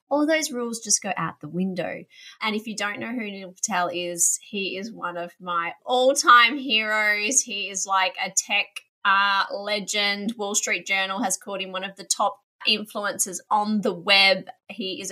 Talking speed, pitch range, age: 185 wpm, 190-235 Hz, 20-39